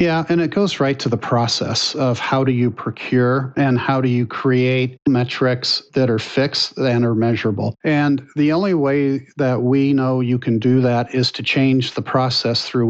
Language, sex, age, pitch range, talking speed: English, male, 50-69, 125-145 Hz, 195 wpm